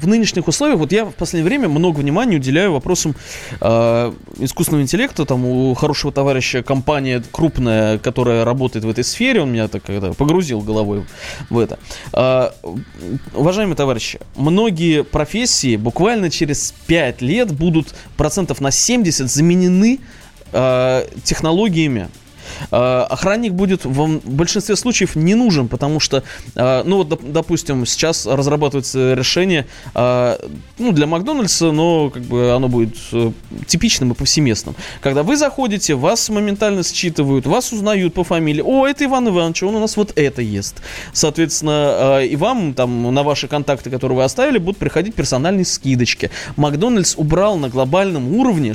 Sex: male